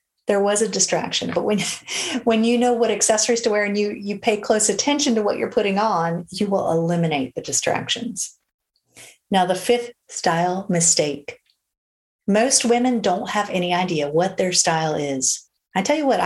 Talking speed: 175 wpm